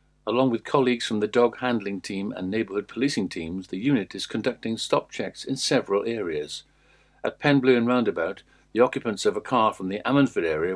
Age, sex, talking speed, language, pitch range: 60-79, male, 180 wpm, English, 110-135 Hz